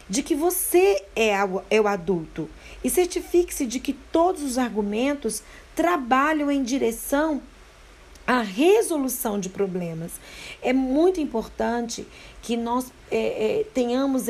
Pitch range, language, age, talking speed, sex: 220-290 Hz, Portuguese, 40-59, 110 wpm, female